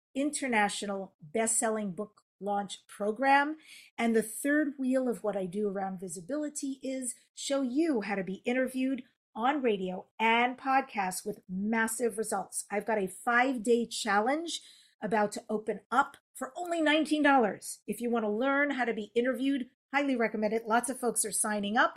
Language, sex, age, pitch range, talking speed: English, female, 40-59, 210-275 Hz, 160 wpm